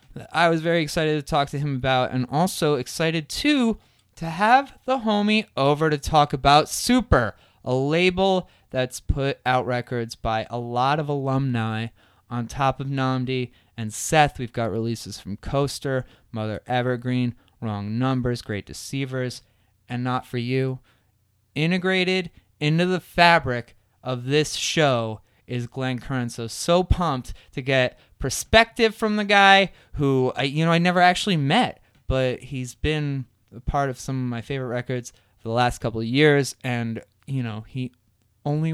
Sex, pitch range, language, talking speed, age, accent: male, 120-175 Hz, English, 160 wpm, 20-39, American